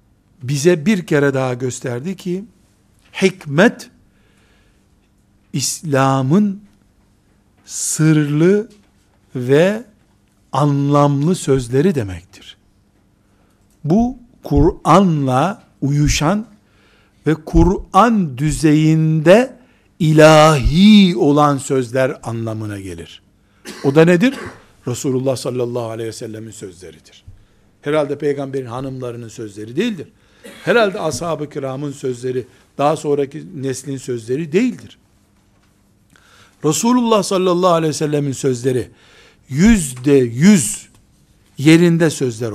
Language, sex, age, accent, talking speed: Turkish, male, 60-79, native, 80 wpm